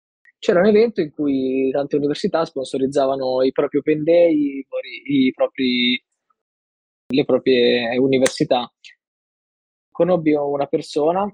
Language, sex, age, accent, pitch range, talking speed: Italian, male, 20-39, native, 135-160 Hz, 95 wpm